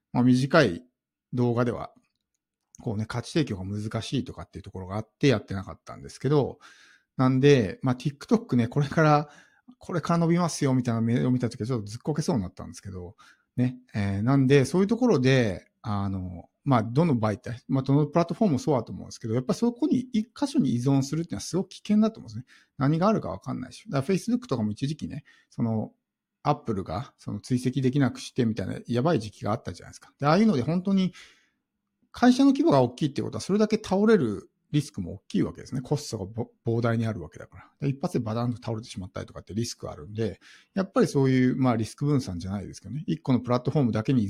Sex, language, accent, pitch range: male, Japanese, native, 110-155 Hz